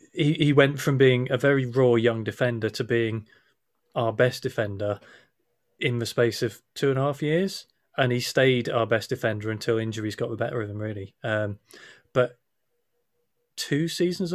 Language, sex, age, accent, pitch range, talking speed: English, male, 30-49, British, 115-145 Hz, 175 wpm